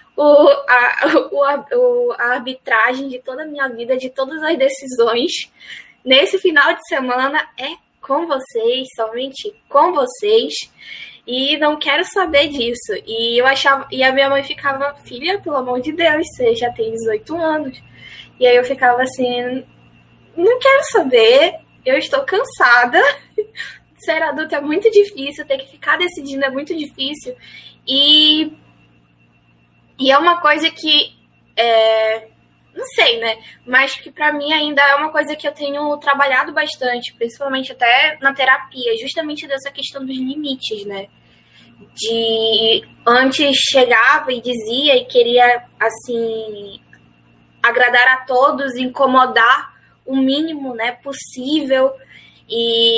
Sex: female